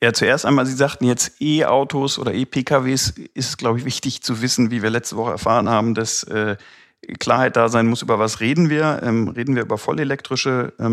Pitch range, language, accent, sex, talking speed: 110-130 Hz, German, German, male, 200 wpm